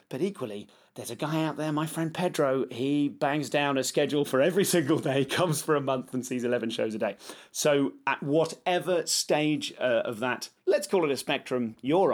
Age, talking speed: 30-49, 210 wpm